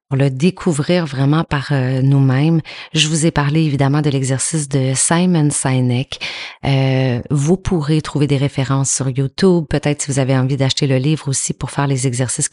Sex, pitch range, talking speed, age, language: female, 135-155 Hz, 180 wpm, 30-49, French